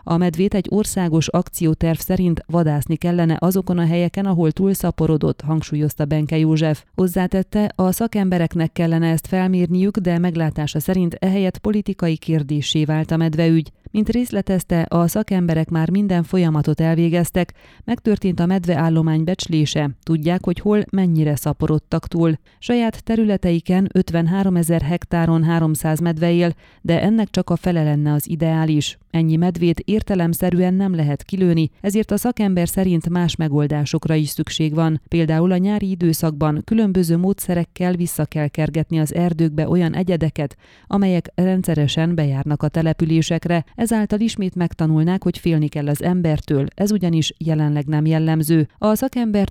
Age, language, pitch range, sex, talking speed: 30-49, Hungarian, 160-185 Hz, female, 135 wpm